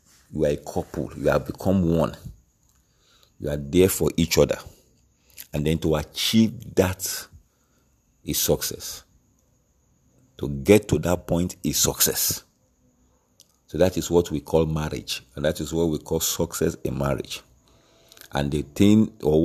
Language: English